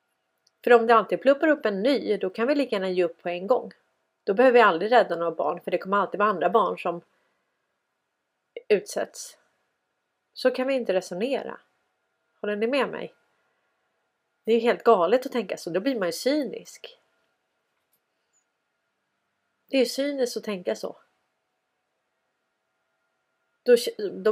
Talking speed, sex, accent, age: 155 wpm, female, native, 30-49